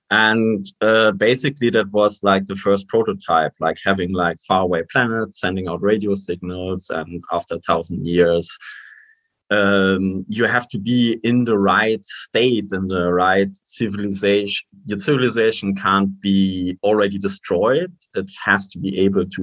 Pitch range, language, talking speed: 90-110 Hz, English, 150 wpm